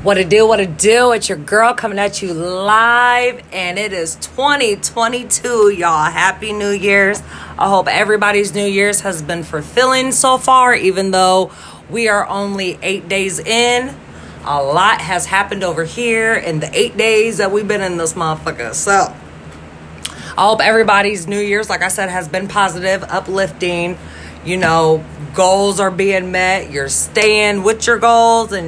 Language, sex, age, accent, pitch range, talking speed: English, female, 30-49, American, 160-205 Hz, 165 wpm